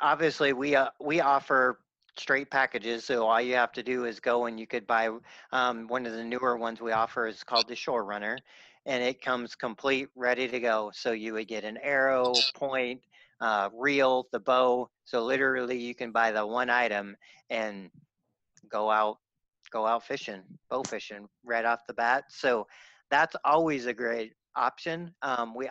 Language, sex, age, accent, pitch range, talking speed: English, male, 40-59, American, 115-130 Hz, 180 wpm